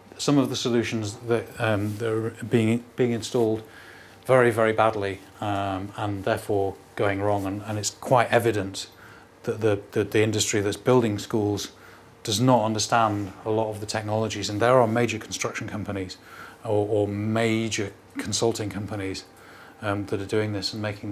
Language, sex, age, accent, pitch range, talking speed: English, male, 30-49, British, 100-115 Hz, 170 wpm